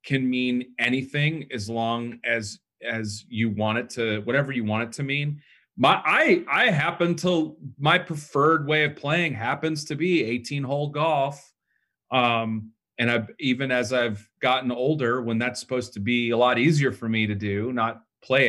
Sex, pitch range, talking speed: male, 115-135 Hz, 180 wpm